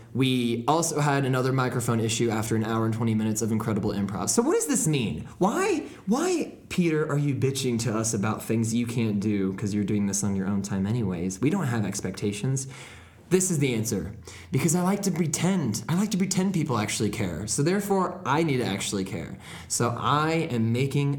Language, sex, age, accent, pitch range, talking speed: English, male, 20-39, American, 110-150 Hz, 205 wpm